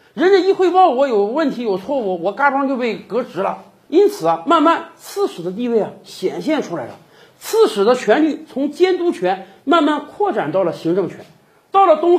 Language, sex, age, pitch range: Chinese, male, 50-69, 210-330 Hz